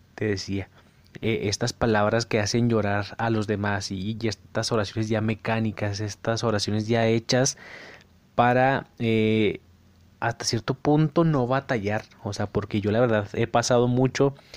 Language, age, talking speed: Spanish, 20-39, 150 wpm